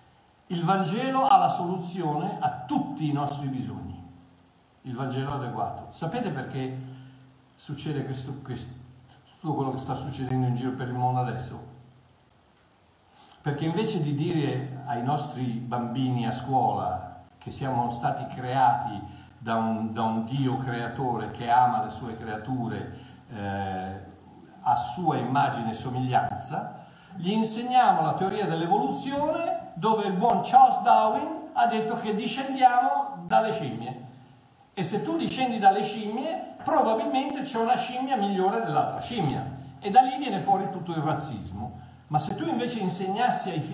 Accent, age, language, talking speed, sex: native, 50-69, Italian, 140 wpm, male